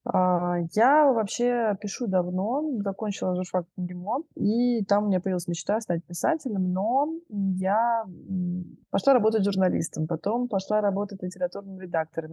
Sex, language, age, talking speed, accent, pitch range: female, Russian, 20-39, 125 wpm, native, 170-220 Hz